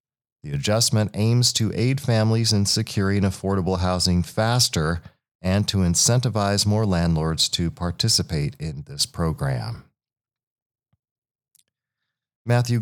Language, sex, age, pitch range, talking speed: English, male, 40-59, 90-120 Hz, 105 wpm